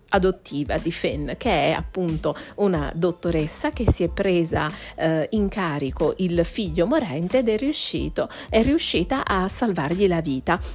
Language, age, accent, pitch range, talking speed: Italian, 40-59, native, 160-215 Hz, 150 wpm